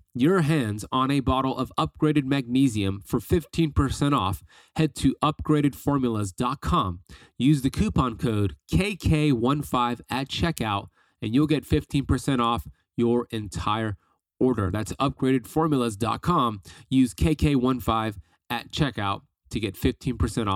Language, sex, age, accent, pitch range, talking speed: English, male, 30-49, American, 105-130 Hz, 110 wpm